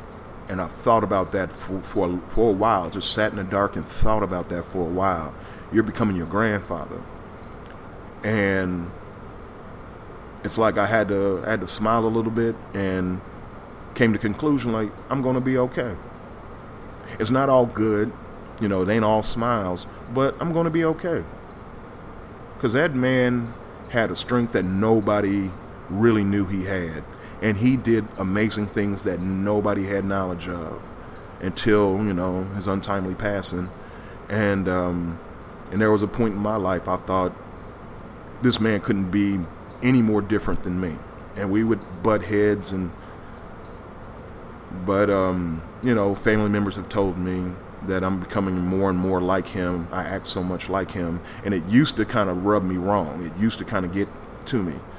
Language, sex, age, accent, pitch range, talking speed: English, male, 30-49, American, 95-110 Hz, 175 wpm